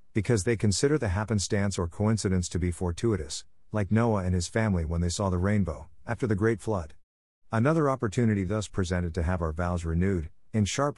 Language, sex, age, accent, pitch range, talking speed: English, male, 50-69, American, 90-110 Hz, 190 wpm